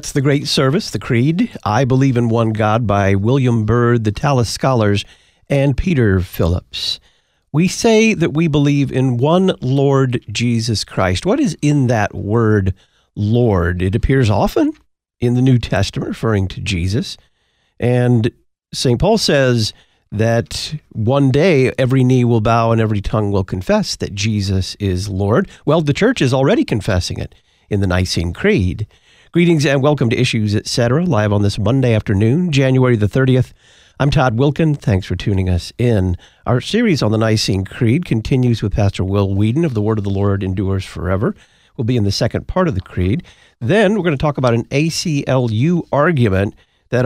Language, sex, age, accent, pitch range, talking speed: English, male, 50-69, American, 105-140 Hz, 175 wpm